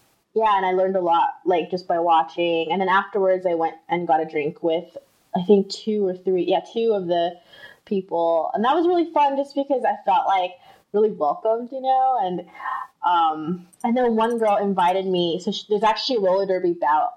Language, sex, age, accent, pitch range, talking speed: English, female, 20-39, American, 180-265 Hz, 205 wpm